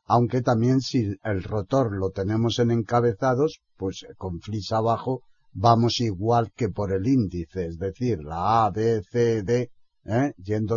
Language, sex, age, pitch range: Spanish, male, 60-79, 100-120 Hz